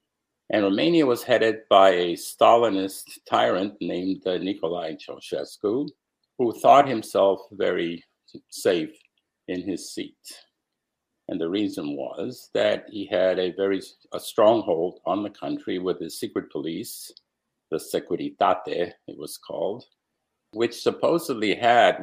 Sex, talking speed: male, 120 wpm